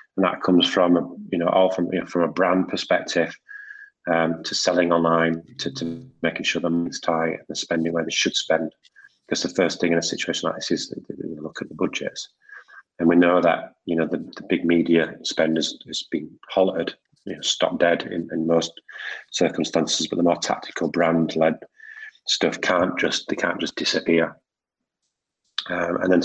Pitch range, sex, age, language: 80-100 Hz, male, 30-49, English